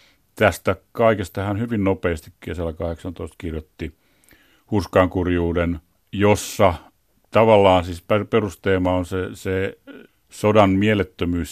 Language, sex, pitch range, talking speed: Finnish, male, 85-100 Hz, 100 wpm